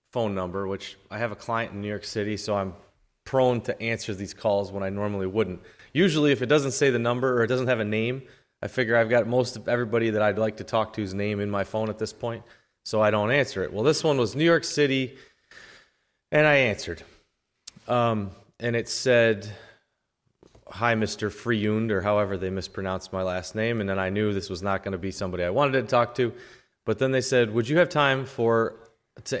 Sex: male